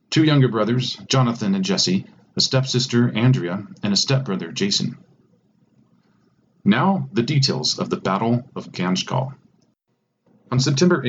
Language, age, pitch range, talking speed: English, 40-59, 115-140 Hz, 130 wpm